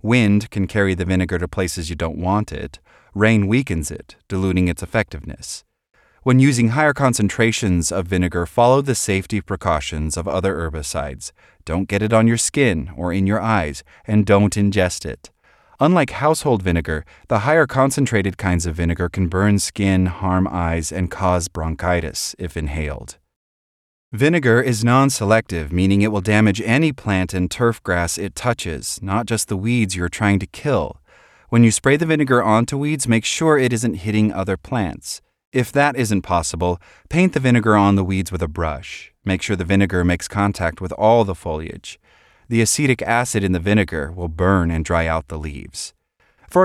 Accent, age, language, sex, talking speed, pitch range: American, 30-49, English, male, 175 wpm, 90-115 Hz